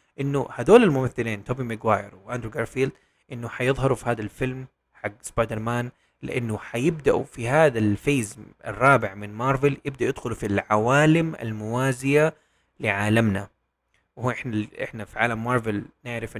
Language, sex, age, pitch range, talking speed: Arabic, male, 20-39, 105-135 Hz, 130 wpm